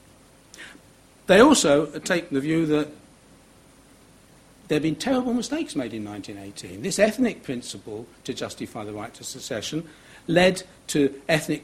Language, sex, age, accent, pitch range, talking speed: English, male, 60-79, British, 130-170 Hz, 135 wpm